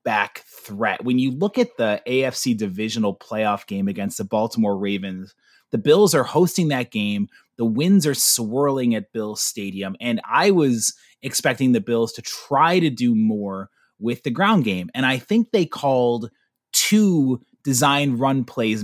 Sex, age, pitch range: male, 30-49, 115-150 Hz